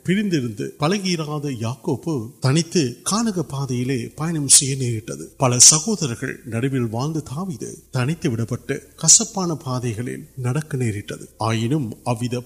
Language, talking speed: Urdu, 65 wpm